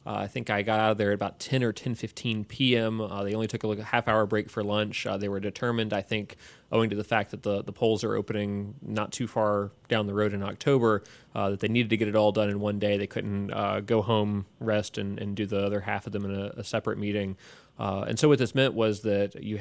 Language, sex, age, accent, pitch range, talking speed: English, male, 30-49, American, 100-115 Hz, 265 wpm